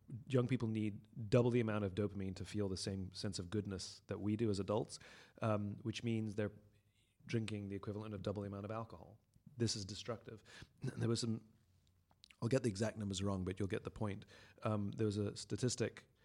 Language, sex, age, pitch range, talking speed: English, male, 30-49, 100-110 Hz, 205 wpm